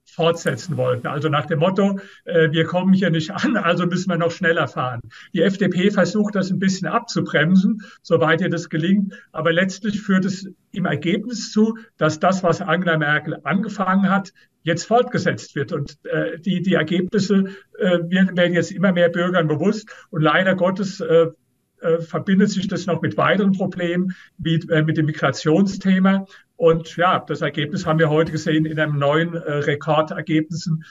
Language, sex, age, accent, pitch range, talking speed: German, male, 50-69, German, 155-185 Hz, 170 wpm